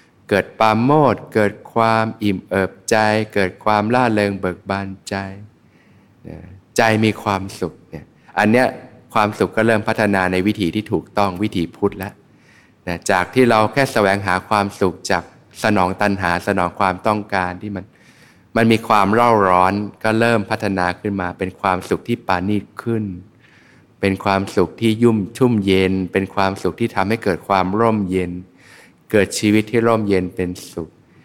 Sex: male